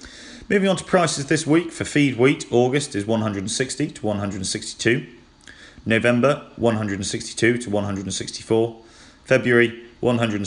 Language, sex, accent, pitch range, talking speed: English, male, British, 100-120 Hz, 190 wpm